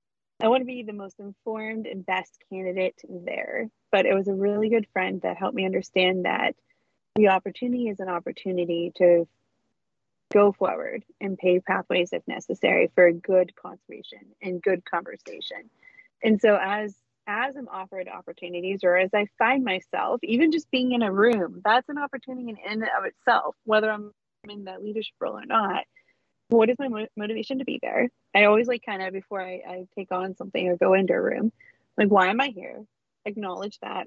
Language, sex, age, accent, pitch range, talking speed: English, female, 30-49, American, 185-235 Hz, 185 wpm